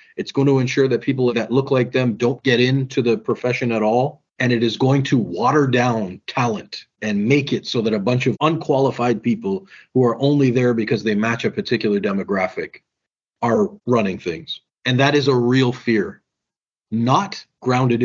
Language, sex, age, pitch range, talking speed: English, male, 40-59, 110-140 Hz, 185 wpm